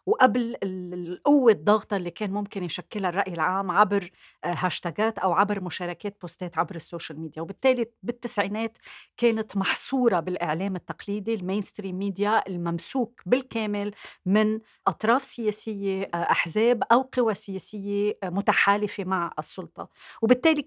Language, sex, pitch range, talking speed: Arabic, female, 185-235 Hz, 115 wpm